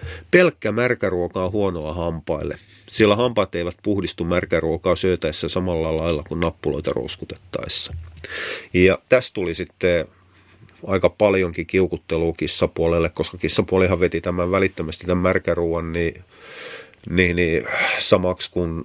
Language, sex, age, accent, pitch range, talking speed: Finnish, male, 30-49, native, 85-110 Hz, 120 wpm